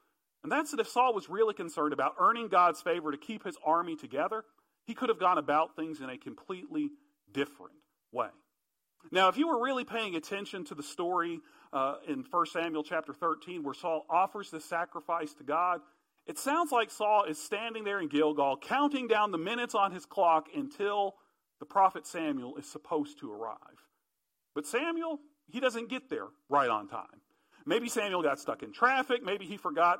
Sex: male